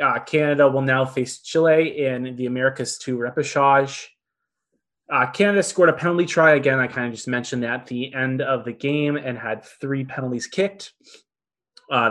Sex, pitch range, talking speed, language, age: male, 125-155 Hz, 180 wpm, English, 20-39